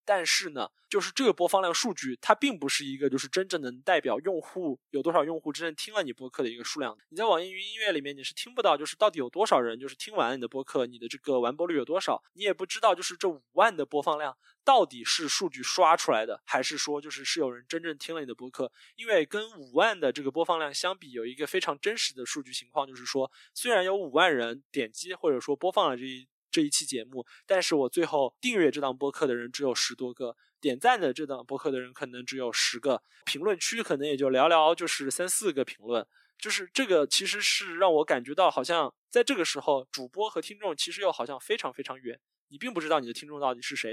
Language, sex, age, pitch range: Chinese, male, 20-39, 135-180 Hz